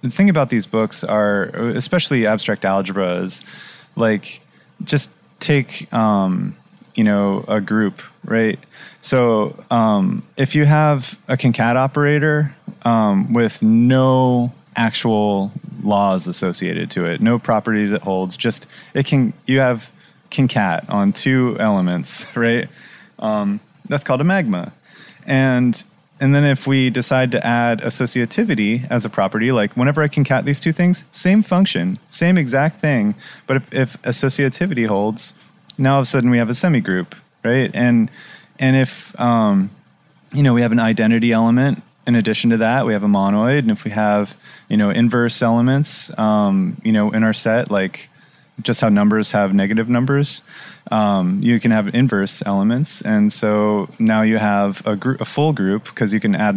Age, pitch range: 20-39, 110-150 Hz